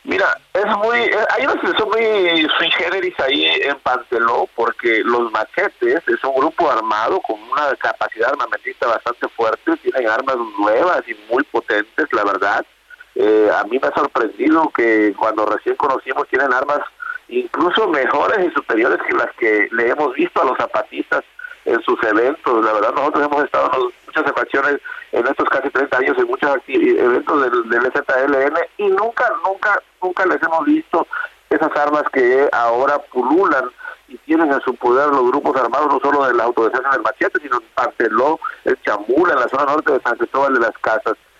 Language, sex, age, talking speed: Spanish, male, 50-69, 180 wpm